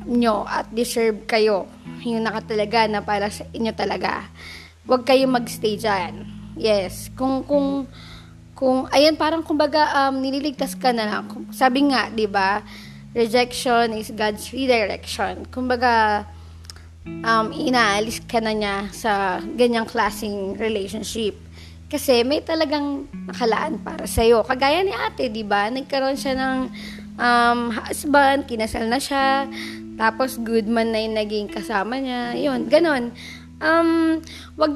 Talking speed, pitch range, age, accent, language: 130 wpm, 210-265 Hz, 20-39, native, Filipino